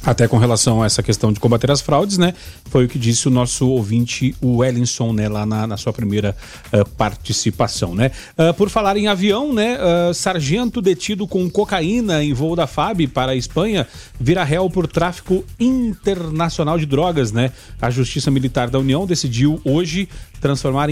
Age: 40-59